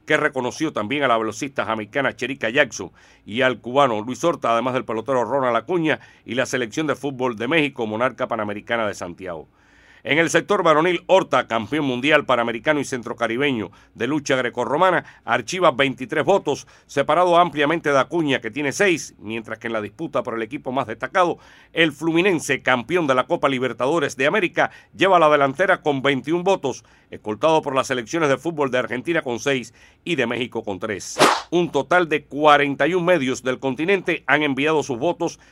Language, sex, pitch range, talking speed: Spanish, male, 125-155 Hz, 175 wpm